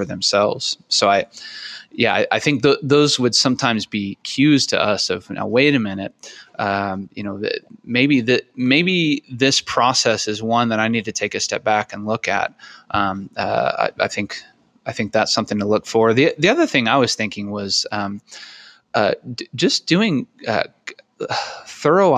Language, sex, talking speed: English, male, 185 wpm